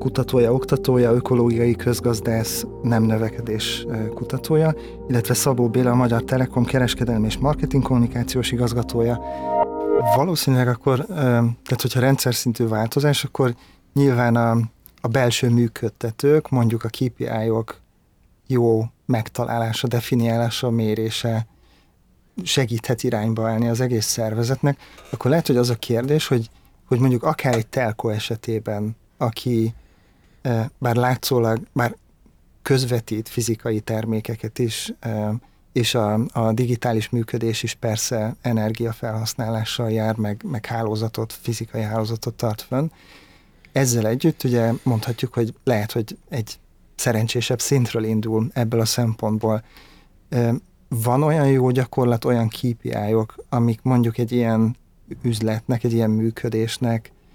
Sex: male